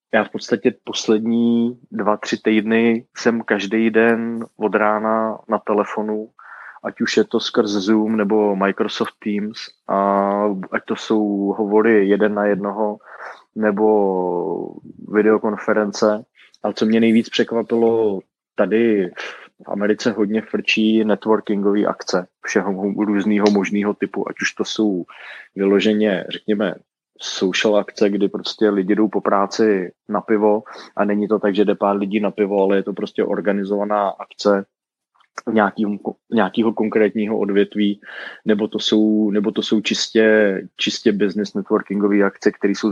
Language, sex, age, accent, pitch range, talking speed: Czech, male, 20-39, native, 100-110 Hz, 135 wpm